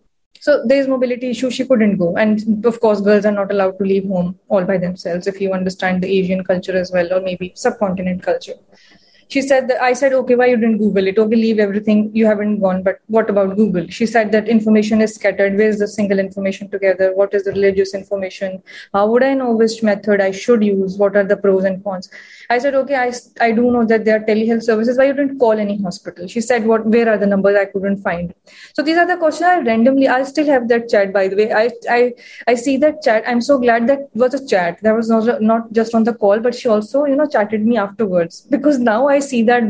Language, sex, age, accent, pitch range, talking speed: English, female, 20-39, Indian, 200-240 Hz, 245 wpm